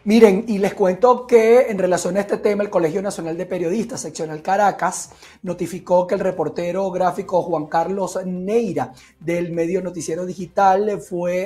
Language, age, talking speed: Spanish, 30-49, 155 wpm